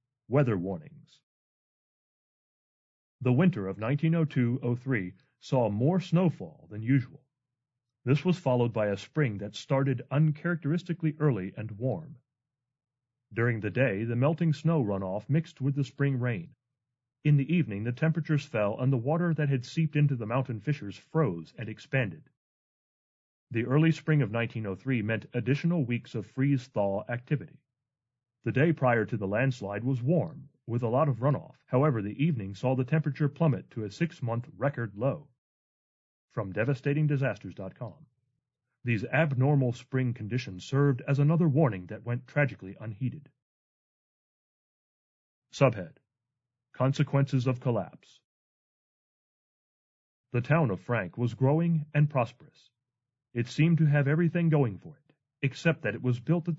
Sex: male